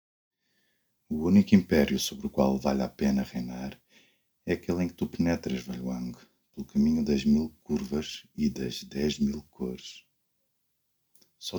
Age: 50-69